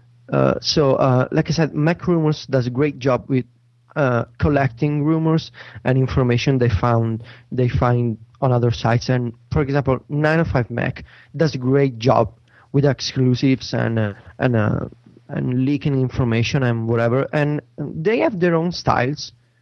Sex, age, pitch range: male, 30-49, 120-160 Hz